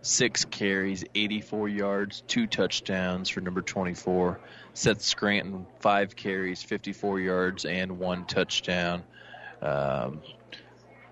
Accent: American